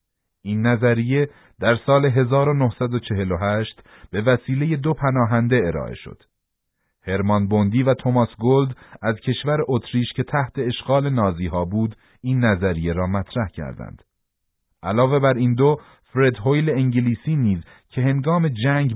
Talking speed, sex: 130 wpm, male